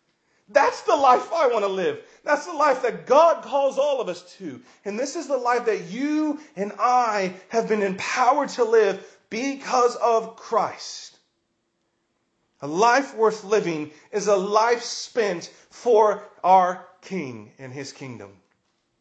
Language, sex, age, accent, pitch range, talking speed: English, male, 40-59, American, 180-225 Hz, 150 wpm